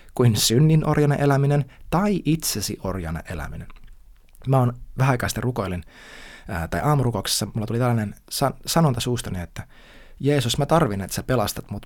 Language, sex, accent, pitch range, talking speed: Finnish, male, native, 95-135 Hz, 140 wpm